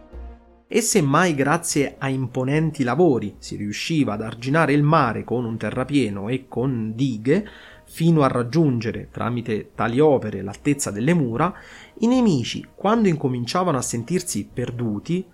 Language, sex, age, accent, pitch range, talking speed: Italian, male, 30-49, native, 120-170 Hz, 135 wpm